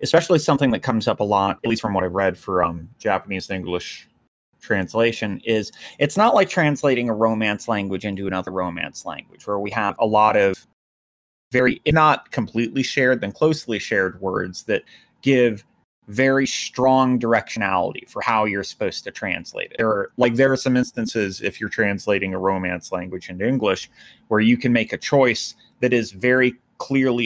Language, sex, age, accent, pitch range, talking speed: English, male, 30-49, American, 95-125 Hz, 180 wpm